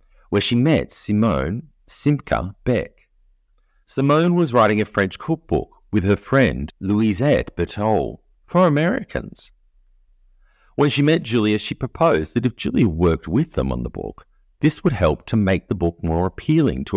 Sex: male